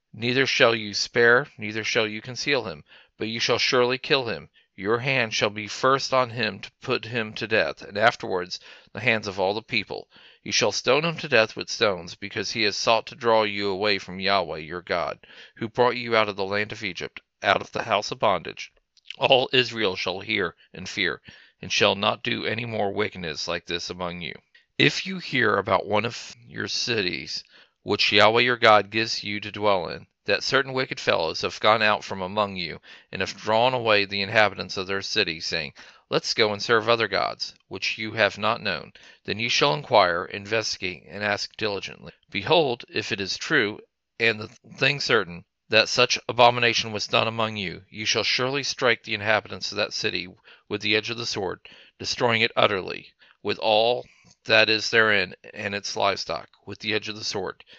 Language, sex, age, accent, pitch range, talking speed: English, male, 40-59, American, 105-120 Hz, 200 wpm